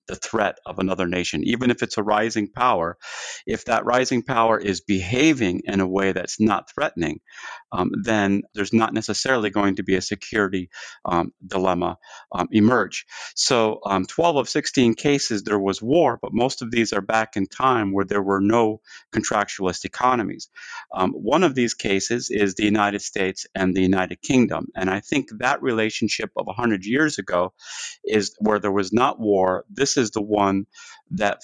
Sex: male